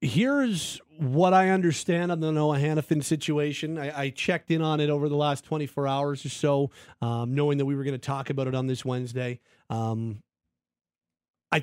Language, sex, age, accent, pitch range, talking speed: English, male, 40-59, American, 125-160 Hz, 190 wpm